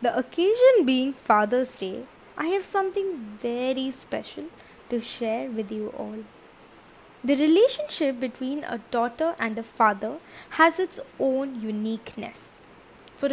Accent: native